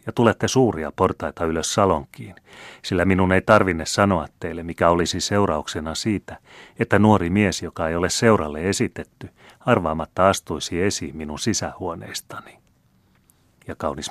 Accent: native